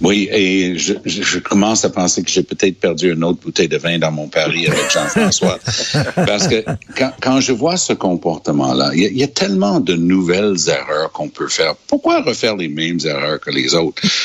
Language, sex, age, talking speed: French, male, 60-79, 205 wpm